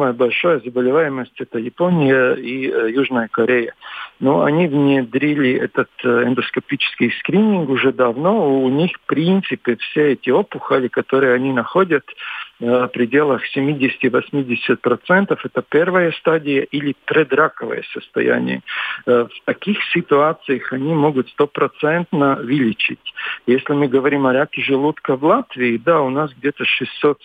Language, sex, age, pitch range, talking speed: Russian, male, 50-69, 125-150 Hz, 120 wpm